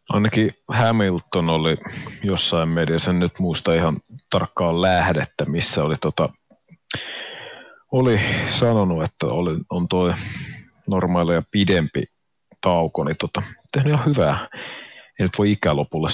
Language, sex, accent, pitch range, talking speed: Finnish, male, native, 85-115 Hz, 120 wpm